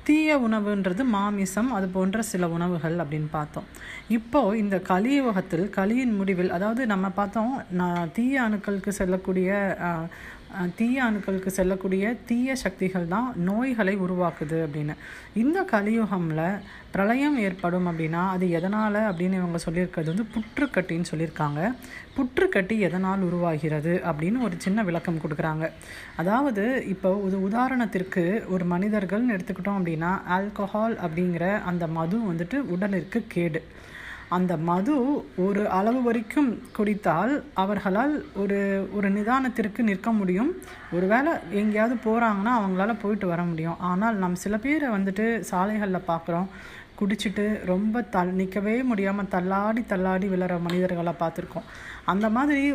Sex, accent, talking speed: female, native, 115 wpm